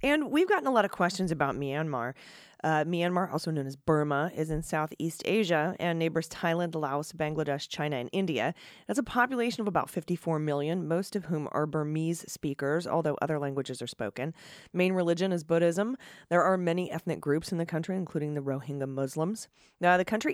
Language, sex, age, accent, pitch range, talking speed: English, female, 30-49, American, 145-180 Hz, 190 wpm